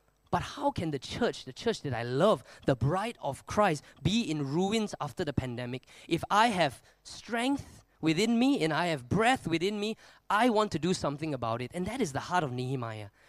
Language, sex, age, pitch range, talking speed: English, male, 20-39, 130-175 Hz, 210 wpm